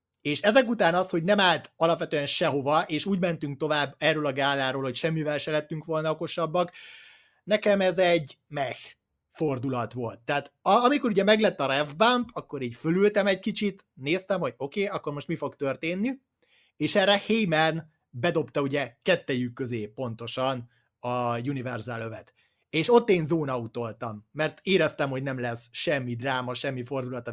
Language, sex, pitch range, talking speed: Hungarian, male, 130-180 Hz, 160 wpm